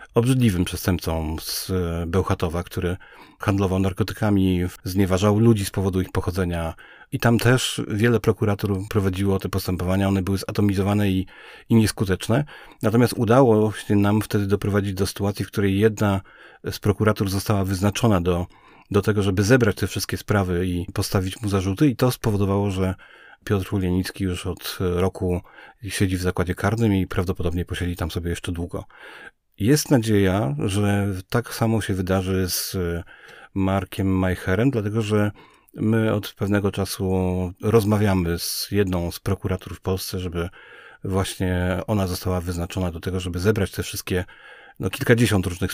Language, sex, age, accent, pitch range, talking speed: Polish, male, 40-59, native, 90-105 Hz, 145 wpm